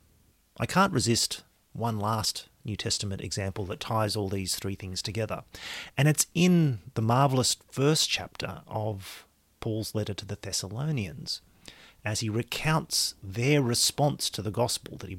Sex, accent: male, Australian